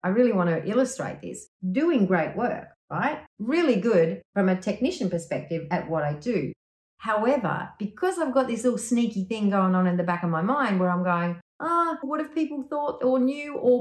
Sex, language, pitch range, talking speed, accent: female, English, 190-260 Hz, 210 wpm, Australian